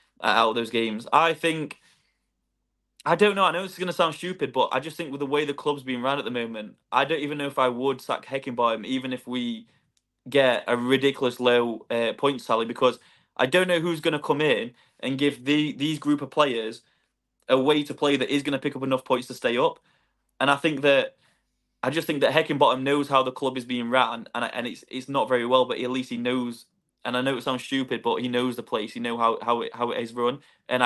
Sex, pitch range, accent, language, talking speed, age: male, 120-145 Hz, British, English, 255 wpm, 20-39